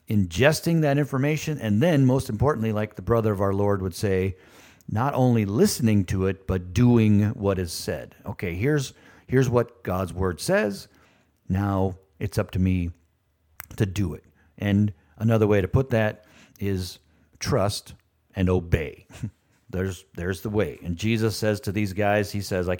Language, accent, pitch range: English, American, 95-115 Hz